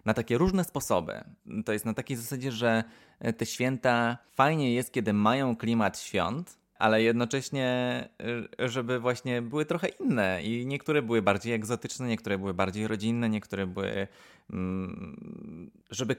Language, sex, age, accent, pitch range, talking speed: Polish, male, 20-39, native, 100-120 Hz, 135 wpm